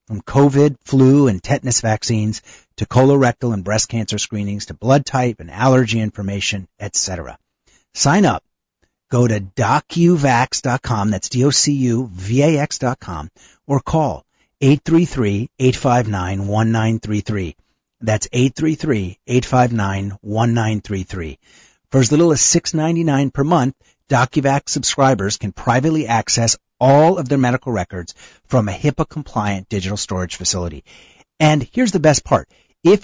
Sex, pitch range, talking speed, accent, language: male, 105-155 Hz, 115 wpm, American, English